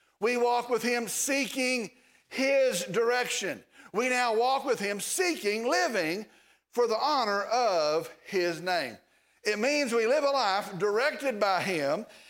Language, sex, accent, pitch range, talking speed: English, male, American, 200-270 Hz, 140 wpm